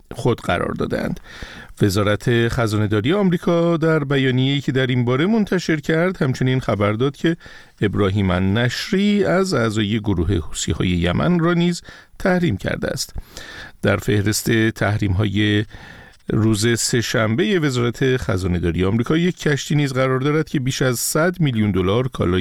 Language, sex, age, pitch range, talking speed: Persian, male, 50-69, 105-160 Hz, 140 wpm